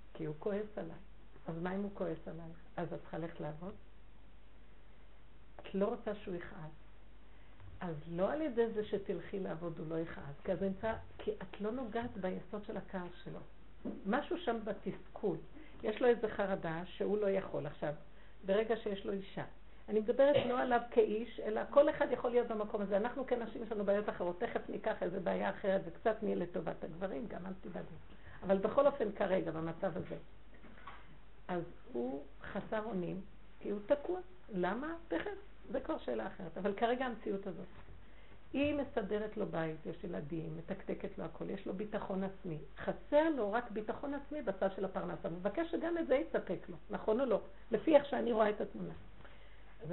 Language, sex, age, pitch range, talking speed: Hebrew, female, 50-69, 185-235 Hz, 175 wpm